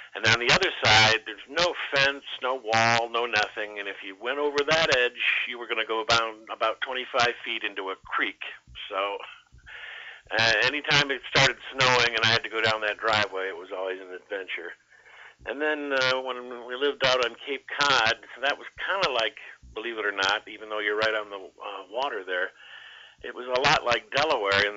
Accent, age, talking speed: American, 50-69, 205 wpm